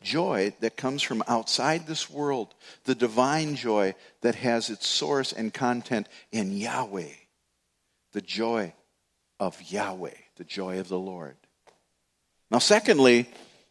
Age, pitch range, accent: 50-69, 115-155 Hz, American